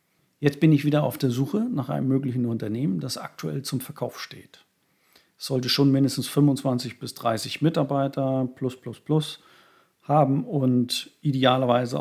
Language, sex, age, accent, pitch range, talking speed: German, male, 50-69, German, 120-145 Hz, 150 wpm